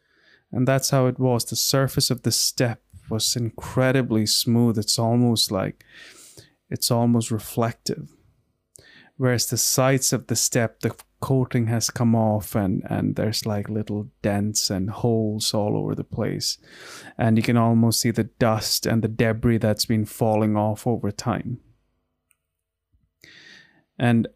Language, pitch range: English, 105-120 Hz